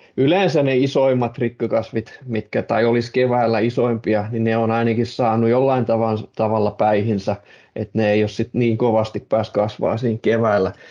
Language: Finnish